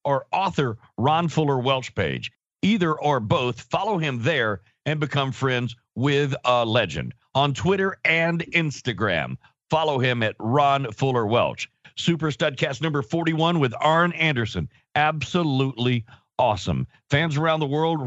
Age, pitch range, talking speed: 50-69, 120-160 Hz, 135 wpm